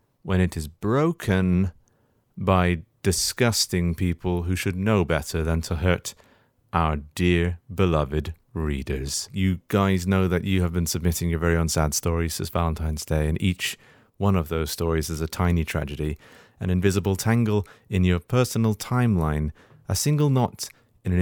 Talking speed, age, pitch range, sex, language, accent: 160 wpm, 30-49, 80-100 Hz, male, English, British